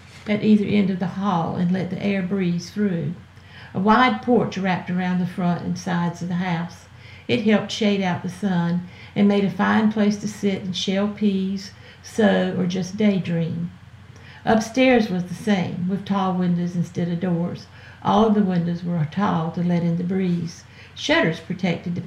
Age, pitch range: 60-79, 170-205 Hz